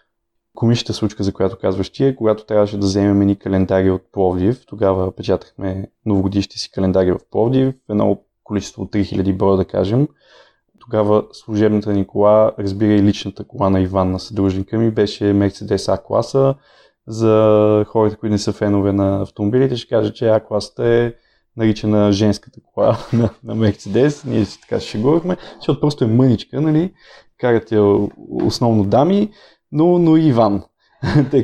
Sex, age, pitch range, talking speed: male, 20-39, 100-120 Hz, 155 wpm